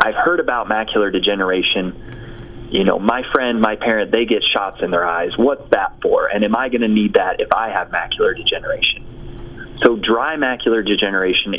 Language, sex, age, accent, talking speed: English, male, 20-39, American, 180 wpm